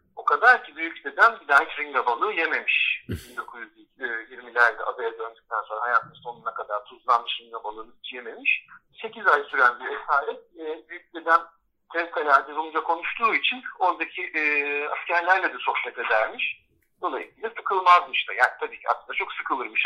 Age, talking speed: 50-69, 140 wpm